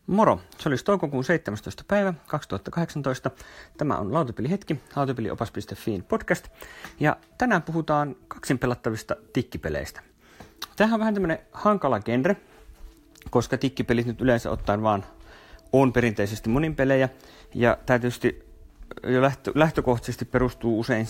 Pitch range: 100-135 Hz